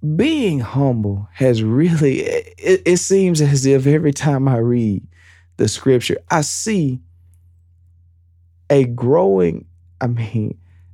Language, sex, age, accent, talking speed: English, male, 40-59, American, 115 wpm